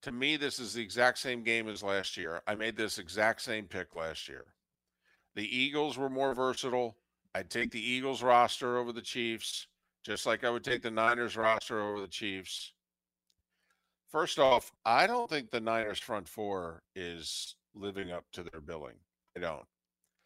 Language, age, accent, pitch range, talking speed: English, 50-69, American, 100-135 Hz, 180 wpm